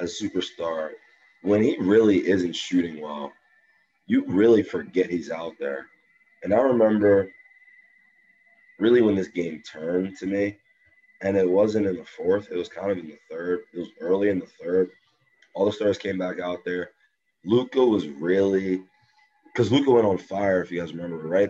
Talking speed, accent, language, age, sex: 175 wpm, American, English, 20-39, male